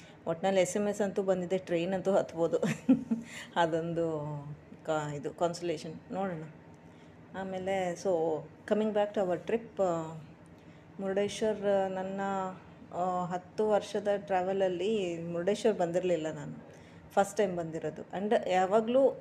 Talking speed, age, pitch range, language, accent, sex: 105 wpm, 20-39, 170-195 Hz, Kannada, native, female